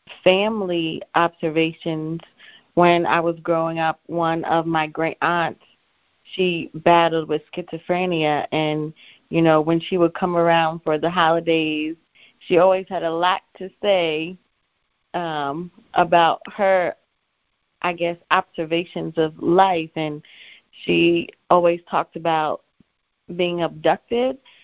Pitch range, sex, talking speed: 160-180 Hz, female, 120 wpm